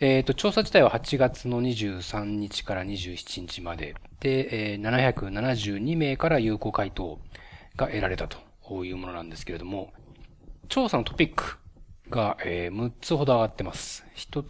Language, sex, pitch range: Japanese, male, 105-150 Hz